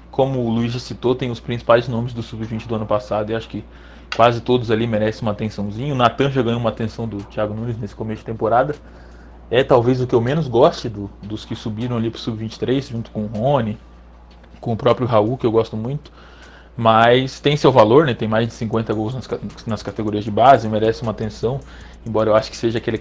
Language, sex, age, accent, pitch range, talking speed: Portuguese, male, 20-39, Brazilian, 105-125 Hz, 220 wpm